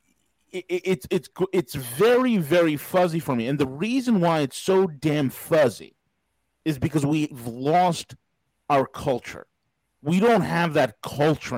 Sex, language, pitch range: male, English, 135-180 Hz